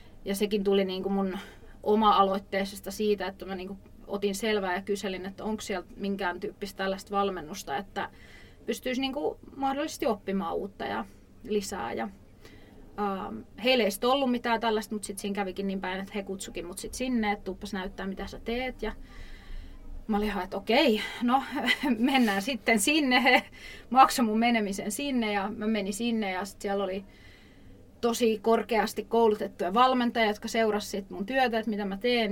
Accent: native